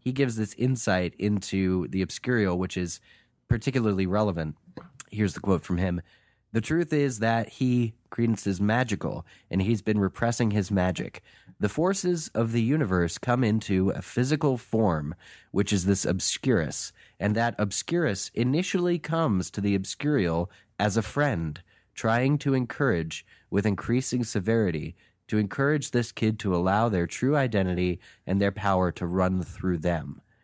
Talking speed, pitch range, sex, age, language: 150 wpm, 95-120 Hz, male, 30-49, English